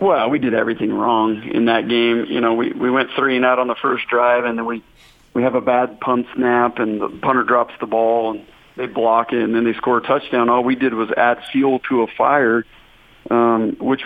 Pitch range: 115-140 Hz